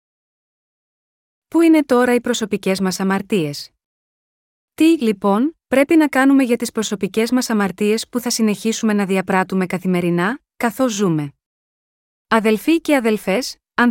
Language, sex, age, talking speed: Greek, female, 30-49, 125 wpm